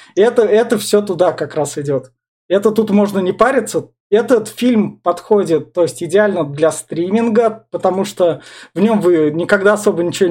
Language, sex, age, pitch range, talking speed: Russian, male, 20-39, 165-210 Hz, 165 wpm